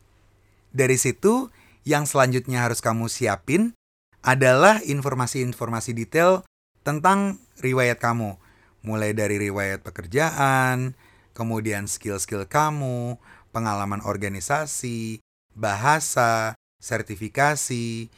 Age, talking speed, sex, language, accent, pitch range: 30-49, 80 wpm, male, Indonesian, native, 105-140 Hz